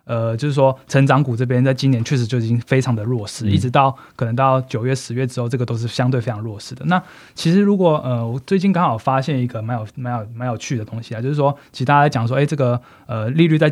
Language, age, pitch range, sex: Chinese, 20-39, 120-145 Hz, male